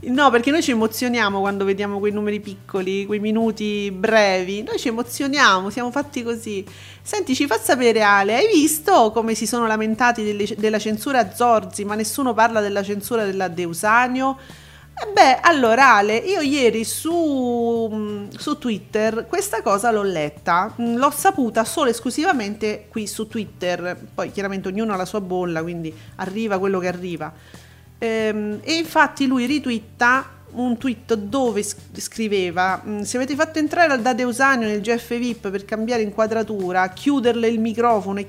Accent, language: native, Italian